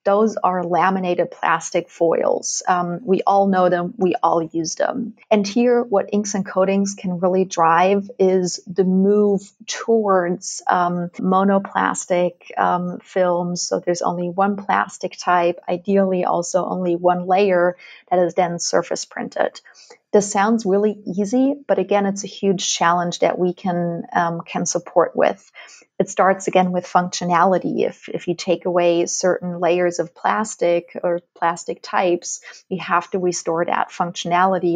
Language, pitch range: English, 175-195 Hz